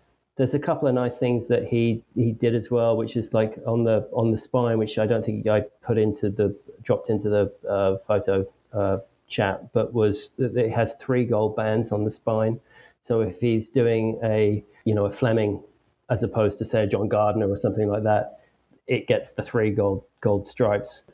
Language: English